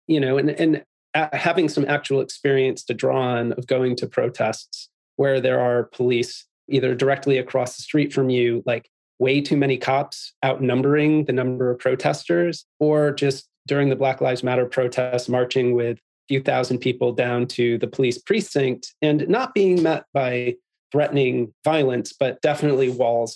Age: 30-49